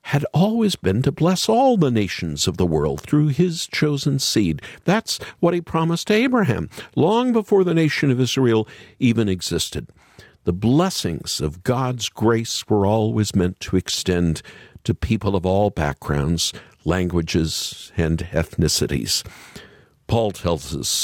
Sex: male